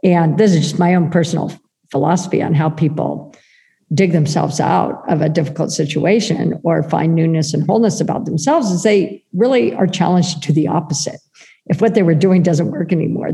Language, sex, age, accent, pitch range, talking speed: English, female, 50-69, American, 160-195 Hz, 185 wpm